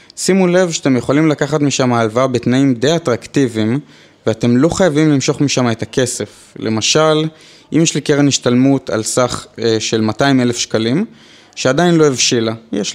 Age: 20-39